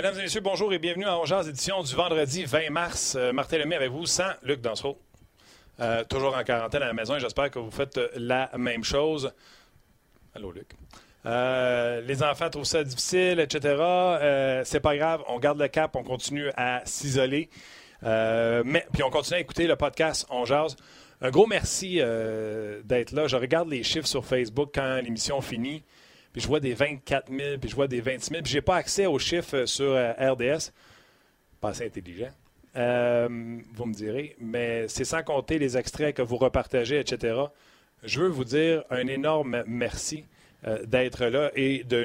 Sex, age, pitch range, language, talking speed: male, 40-59, 120-150 Hz, French, 190 wpm